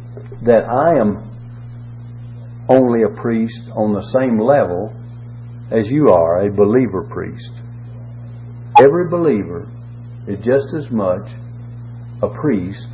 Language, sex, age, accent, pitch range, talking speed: English, male, 60-79, American, 115-120 Hz, 110 wpm